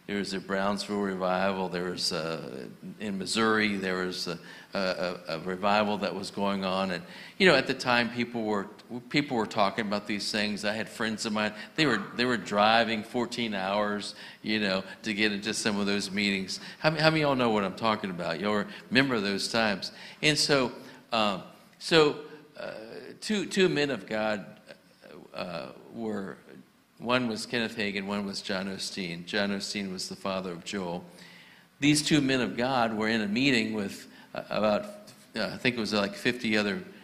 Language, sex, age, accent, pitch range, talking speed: English, male, 60-79, American, 105-145 Hz, 185 wpm